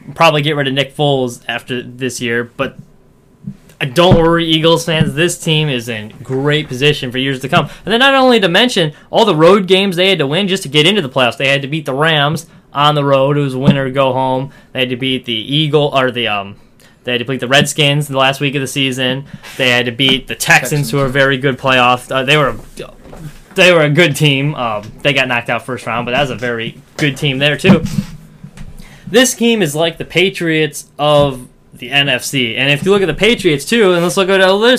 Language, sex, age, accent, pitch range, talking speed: English, male, 10-29, American, 130-170 Hz, 240 wpm